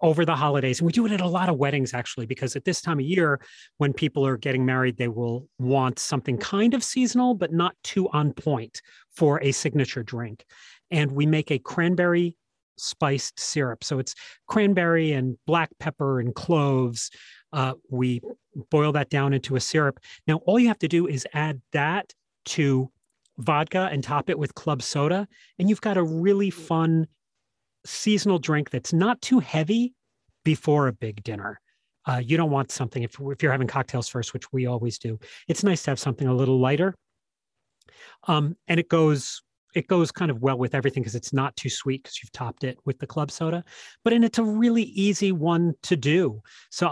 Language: English